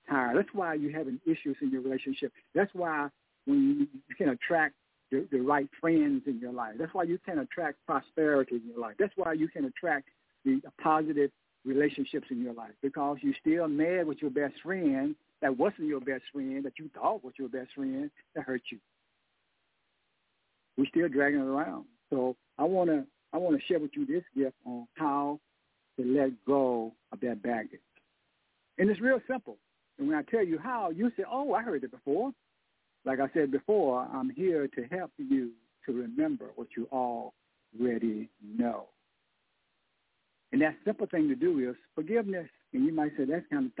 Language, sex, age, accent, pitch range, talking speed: English, male, 60-79, American, 135-215 Hz, 190 wpm